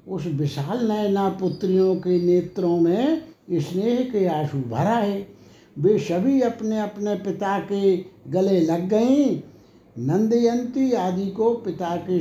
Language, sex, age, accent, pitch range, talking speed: Hindi, male, 60-79, native, 180-215 Hz, 130 wpm